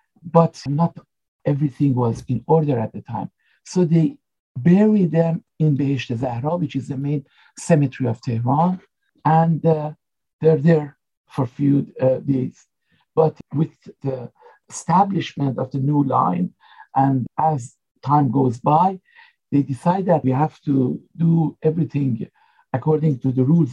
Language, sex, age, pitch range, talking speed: English, male, 60-79, 135-175 Hz, 145 wpm